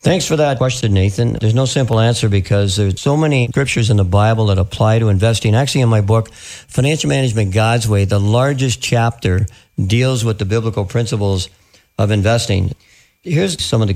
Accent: American